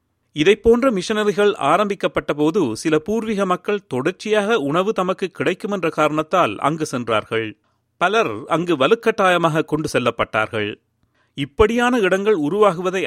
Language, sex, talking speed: Tamil, male, 105 wpm